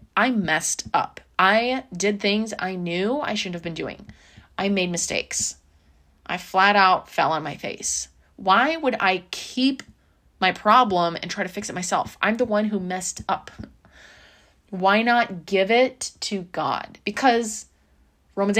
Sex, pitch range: female, 170-230 Hz